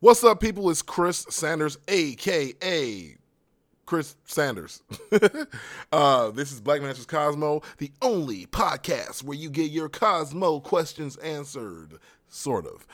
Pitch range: 110-150 Hz